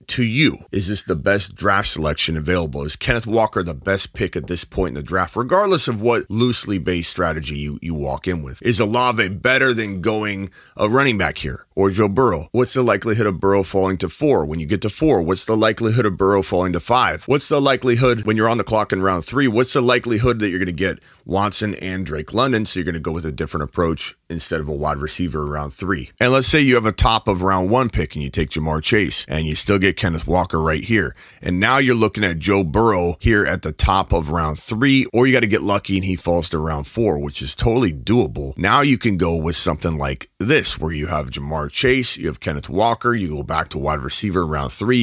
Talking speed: 245 wpm